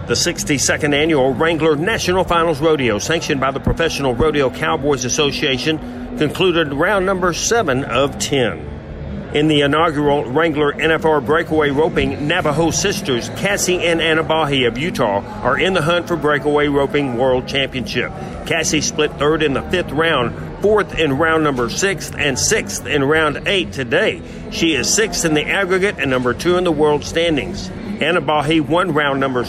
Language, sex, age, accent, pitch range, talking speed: English, male, 50-69, American, 140-170 Hz, 160 wpm